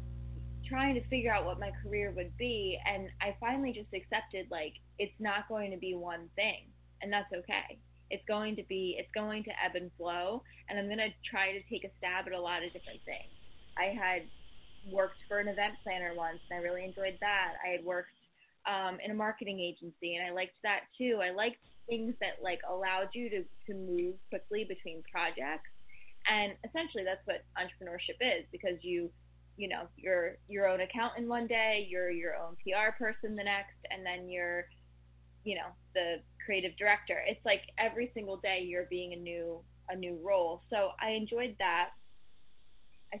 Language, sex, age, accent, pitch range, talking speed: English, female, 20-39, American, 180-215 Hz, 190 wpm